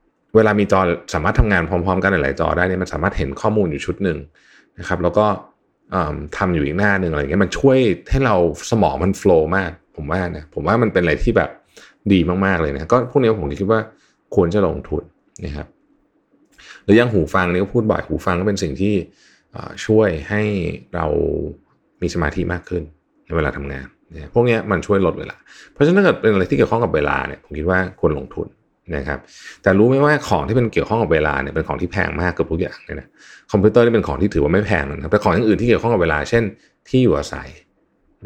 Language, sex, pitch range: Thai, male, 80-105 Hz